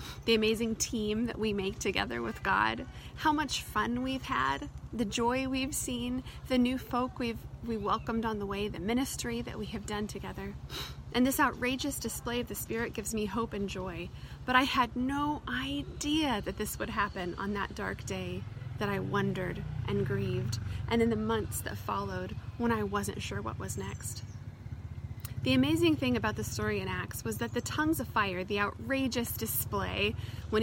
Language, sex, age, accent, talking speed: English, female, 30-49, American, 185 wpm